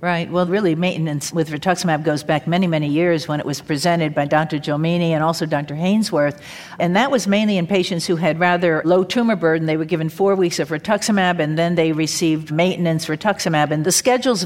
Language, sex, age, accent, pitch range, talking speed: English, female, 50-69, American, 160-200 Hz, 210 wpm